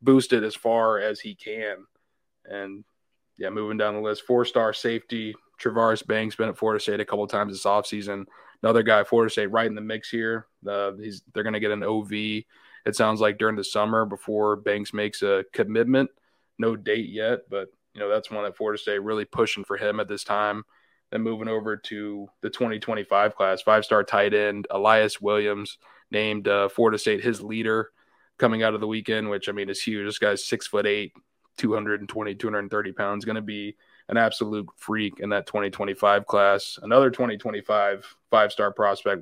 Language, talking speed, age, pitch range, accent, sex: English, 205 wpm, 20-39, 105-110 Hz, American, male